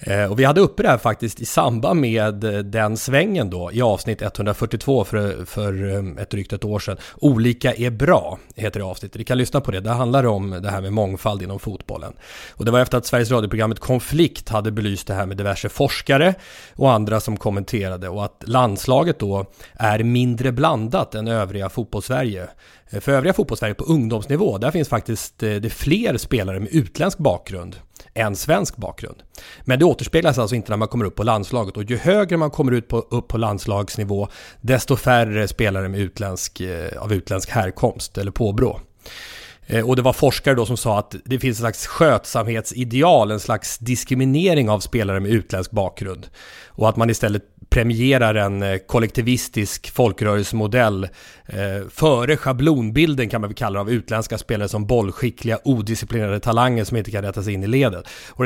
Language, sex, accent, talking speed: English, male, Swedish, 175 wpm